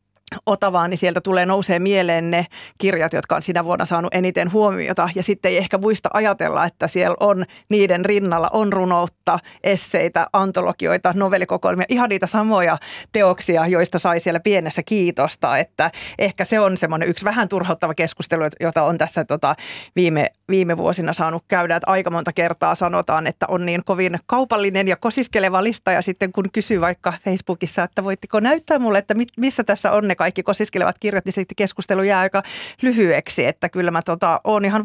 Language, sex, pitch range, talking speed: Finnish, female, 170-200 Hz, 170 wpm